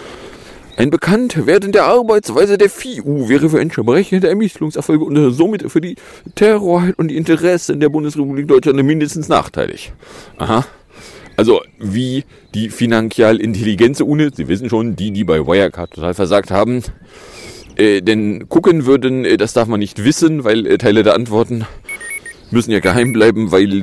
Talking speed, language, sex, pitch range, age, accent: 150 wpm, German, male, 100-155 Hz, 40-59, German